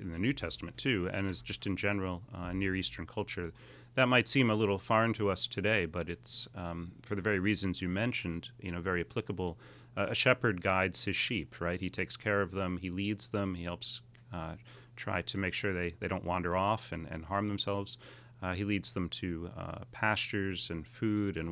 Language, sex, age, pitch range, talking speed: English, male, 30-49, 90-115 Hz, 215 wpm